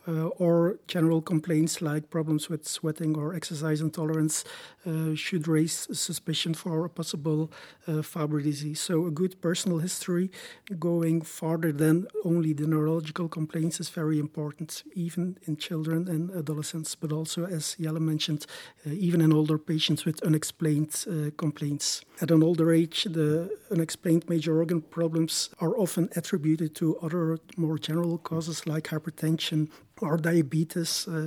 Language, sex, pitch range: English, male, 155-175 Hz